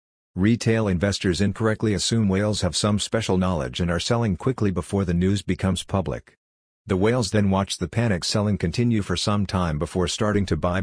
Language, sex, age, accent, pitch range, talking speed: English, male, 50-69, American, 90-105 Hz, 185 wpm